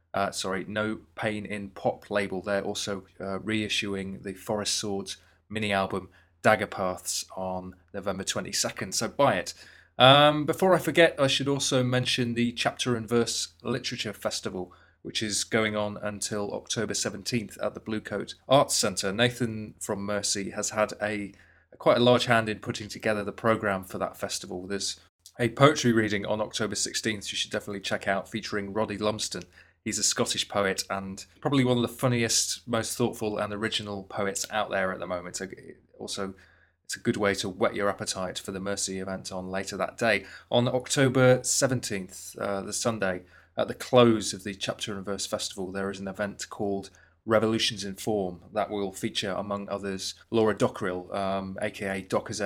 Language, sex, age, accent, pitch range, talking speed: English, male, 30-49, British, 95-110 Hz, 175 wpm